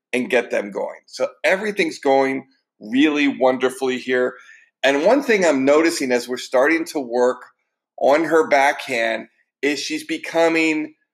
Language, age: English, 50-69